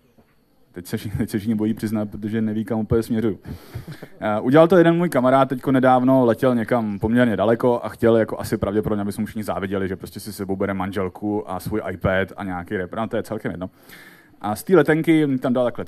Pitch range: 105-125 Hz